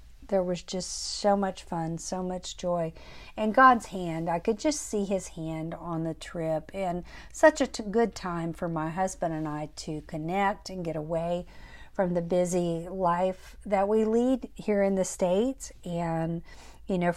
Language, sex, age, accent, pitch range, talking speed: English, female, 50-69, American, 170-205 Hz, 175 wpm